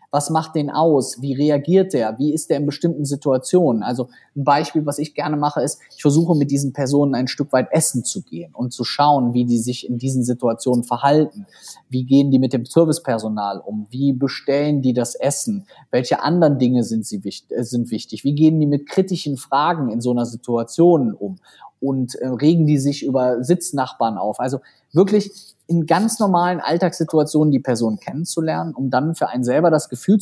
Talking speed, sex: 185 wpm, male